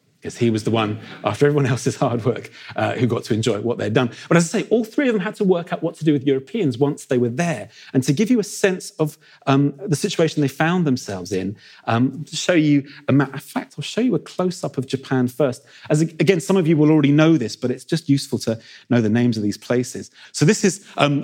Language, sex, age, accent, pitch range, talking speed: English, male, 40-59, British, 125-165 Hz, 265 wpm